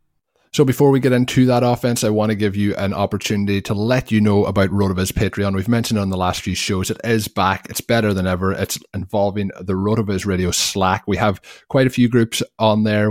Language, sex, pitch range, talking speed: English, male, 90-105 Hz, 225 wpm